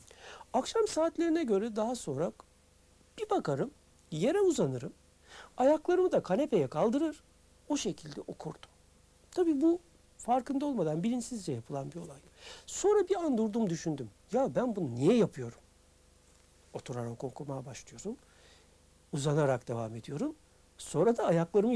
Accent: native